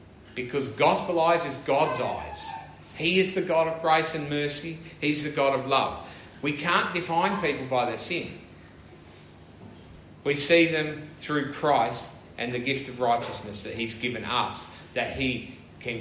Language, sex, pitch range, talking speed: English, male, 105-145 Hz, 160 wpm